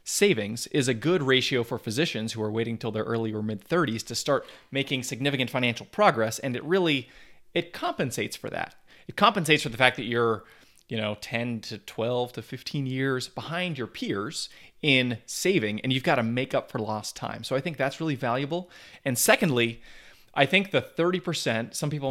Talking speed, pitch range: 195 wpm, 115-150 Hz